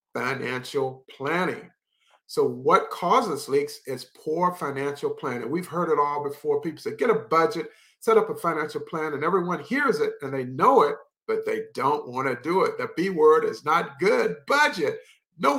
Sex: male